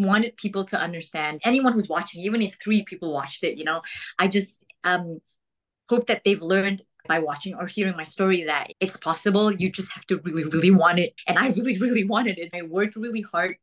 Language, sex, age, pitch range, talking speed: English, female, 20-39, 165-200 Hz, 215 wpm